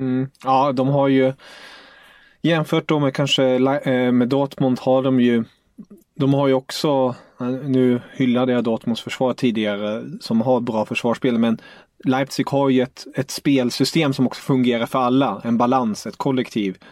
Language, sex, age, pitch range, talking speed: English, male, 30-49, 115-135 Hz, 160 wpm